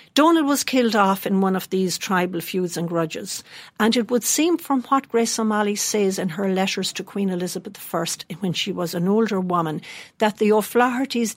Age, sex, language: 60-79, female, English